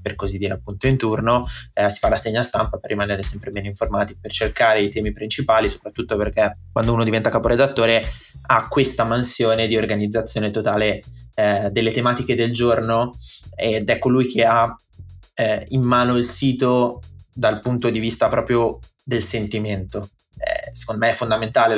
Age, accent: 20-39, native